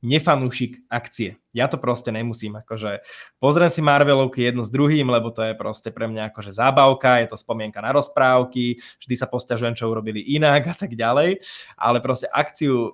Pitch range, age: 115-145 Hz, 20-39